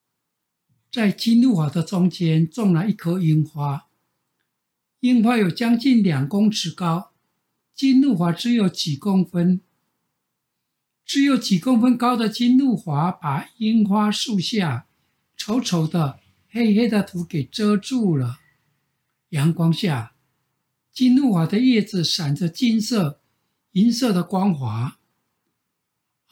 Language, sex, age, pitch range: Chinese, male, 60-79, 155-230 Hz